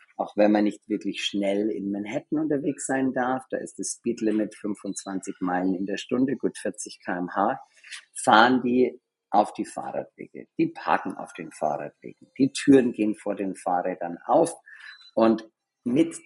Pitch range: 100-130 Hz